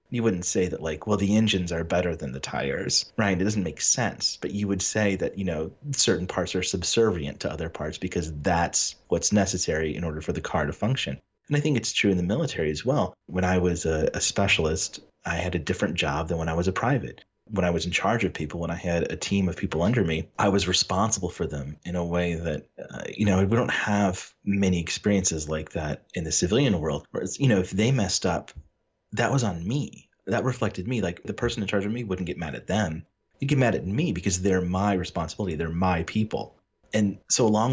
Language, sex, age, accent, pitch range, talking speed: English, male, 30-49, American, 85-105 Hz, 240 wpm